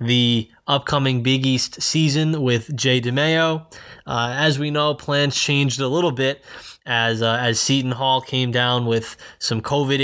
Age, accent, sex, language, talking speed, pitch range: 20-39, American, male, English, 160 wpm, 125-145 Hz